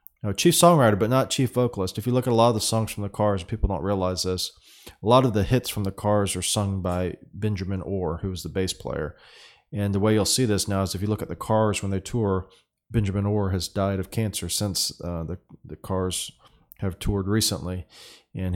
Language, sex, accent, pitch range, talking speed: English, male, American, 95-110 Hz, 235 wpm